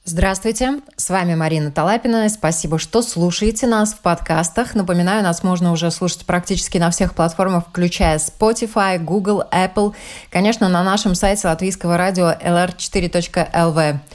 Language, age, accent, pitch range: Russian, 20-39, native, 170-215 Hz